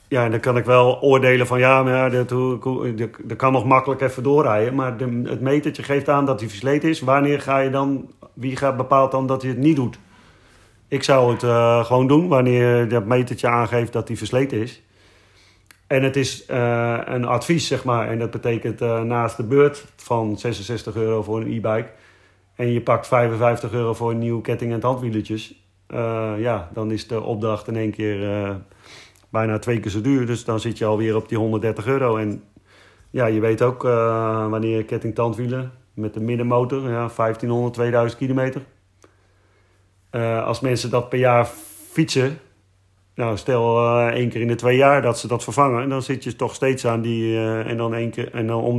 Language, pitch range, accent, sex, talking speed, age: Dutch, 110-130 Hz, Dutch, male, 200 wpm, 40-59